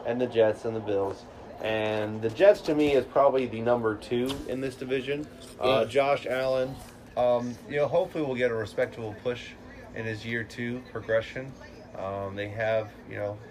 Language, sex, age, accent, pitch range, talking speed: English, male, 30-49, American, 105-120 Hz, 185 wpm